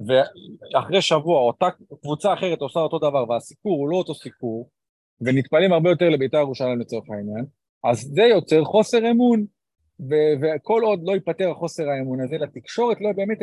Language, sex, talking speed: Hebrew, male, 160 wpm